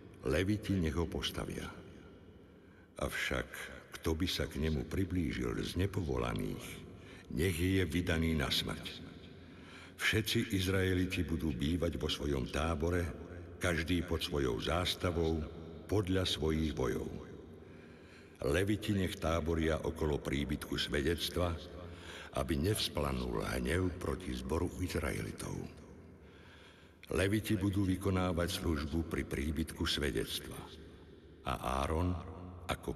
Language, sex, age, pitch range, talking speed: Slovak, male, 60-79, 75-90 Hz, 100 wpm